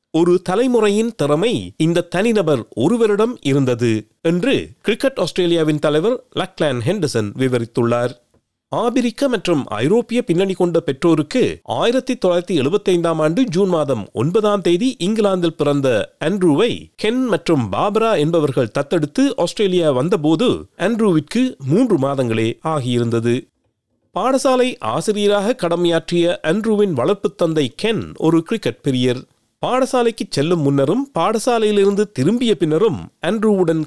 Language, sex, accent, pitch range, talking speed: Tamil, male, native, 140-215 Hz, 105 wpm